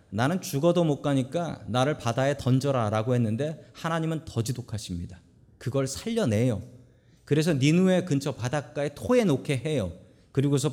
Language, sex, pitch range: Korean, male, 115-180 Hz